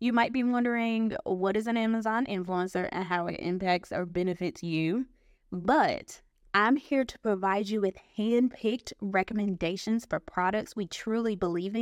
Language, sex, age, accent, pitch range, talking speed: English, female, 20-39, American, 185-225 Hz, 150 wpm